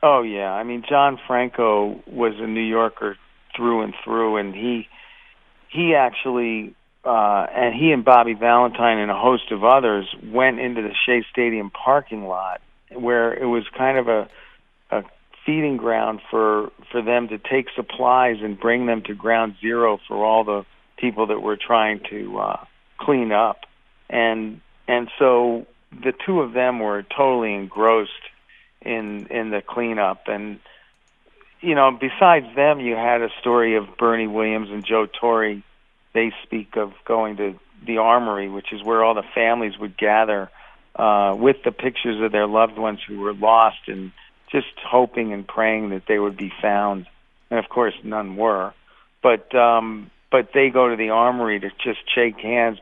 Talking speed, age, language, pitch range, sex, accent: 170 wpm, 50-69, English, 105-120 Hz, male, American